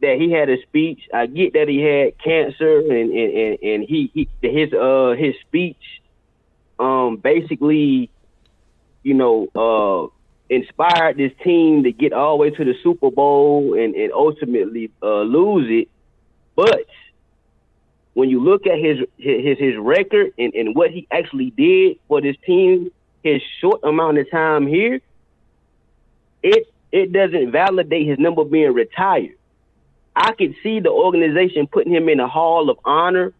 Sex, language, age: male, English, 30-49